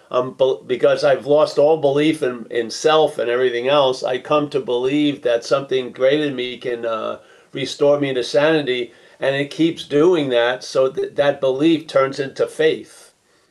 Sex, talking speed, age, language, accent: male, 175 wpm, 50-69, English, American